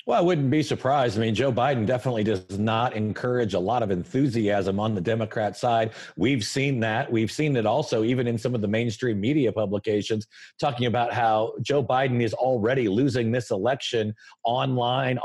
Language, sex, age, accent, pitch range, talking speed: English, male, 50-69, American, 110-130 Hz, 185 wpm